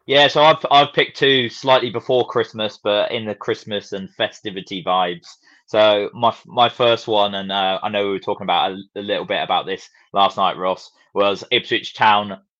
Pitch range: 100-125 Hz